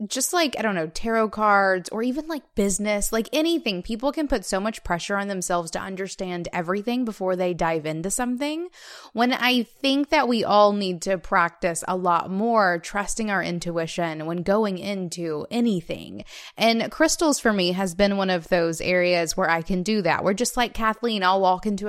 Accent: American